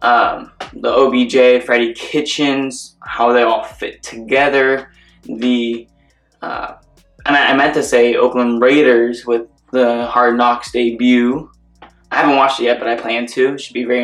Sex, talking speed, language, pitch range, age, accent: male, 165 wpm, English, 120-135 Hz, 10-29, American